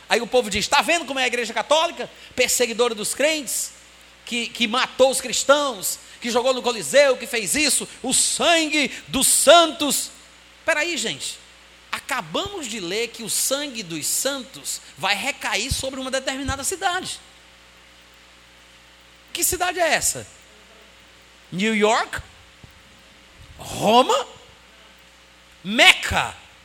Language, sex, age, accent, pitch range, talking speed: Portuguese, male, 40-59, Brazilian, 195-300 Hz, 125 wpm